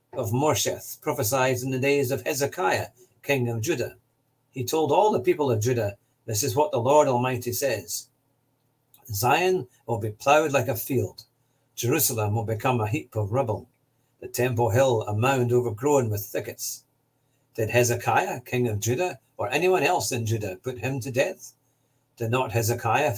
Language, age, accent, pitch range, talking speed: English, 50-69, British, 115-135 Hz, 165 wpm